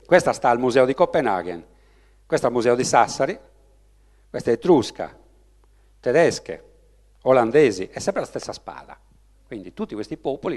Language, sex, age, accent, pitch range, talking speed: Italian, male, 50-69, native, 115-165 Hz, 140 wpm